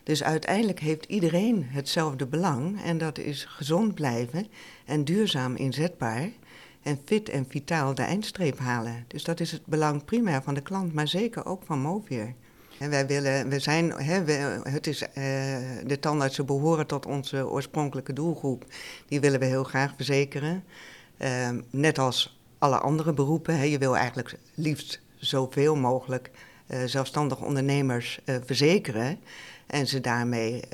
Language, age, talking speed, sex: Dutch, 60-79, 140 wpm, female